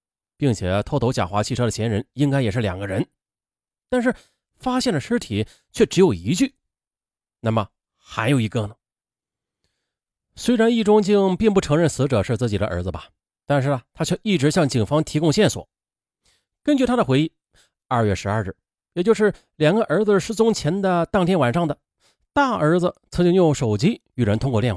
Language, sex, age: Chinese, male, 30-49